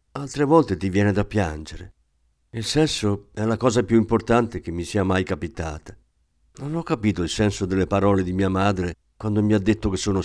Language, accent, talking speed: Italian, native, 200 wpm